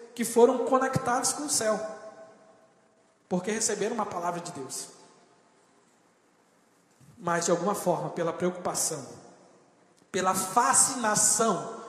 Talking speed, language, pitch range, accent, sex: 100 wpm, Portuguese, 170-250 Hz, Brazilian, male